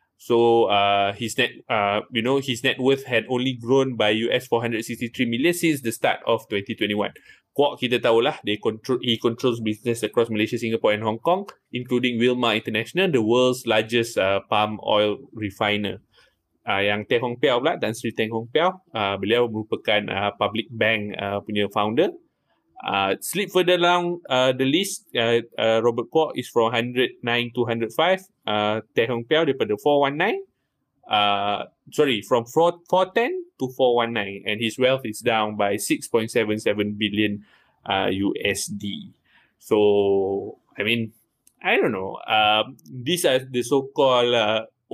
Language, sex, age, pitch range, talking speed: Malay, male, 20-39, 105-130 Hz, 160 wpm